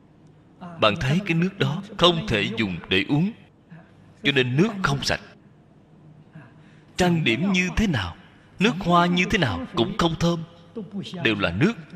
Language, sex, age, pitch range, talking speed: Vietnamese, male, 20-39, 140-180 Hz, 155 wpm